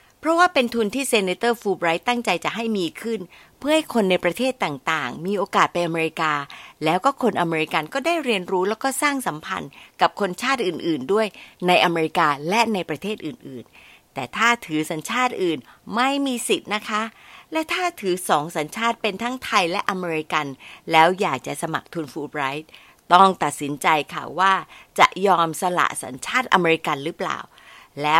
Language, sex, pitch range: Thai, female, 160-235 Hz